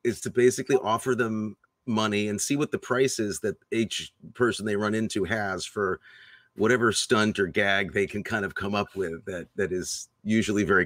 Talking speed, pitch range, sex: 200 wpm, 100-130 Hz, male